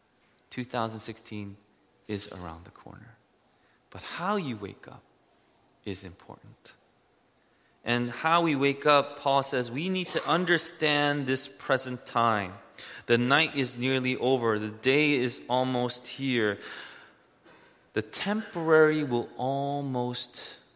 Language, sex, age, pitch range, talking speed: English, male, 20-39, 115-145 Hz, 115 wpm